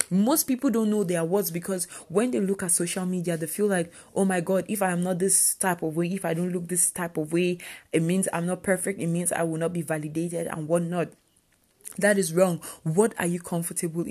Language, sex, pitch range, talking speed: English, female, 170-205 Hz, 240 wpm